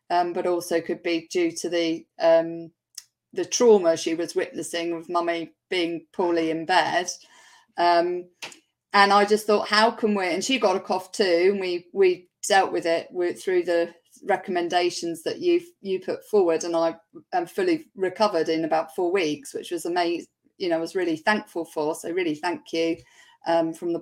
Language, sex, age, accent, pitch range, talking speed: English, female, 40-59, British, 170-265 Hz, 185 wpm